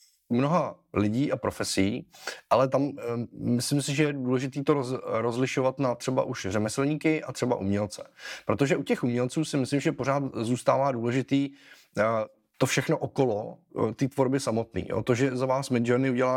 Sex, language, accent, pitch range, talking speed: male, Czech, native, 115-130 Hz, 170 wpm